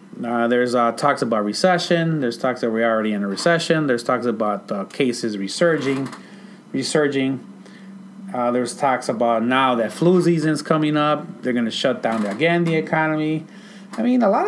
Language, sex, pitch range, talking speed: English, male, 120-190 Hz, 190 wpm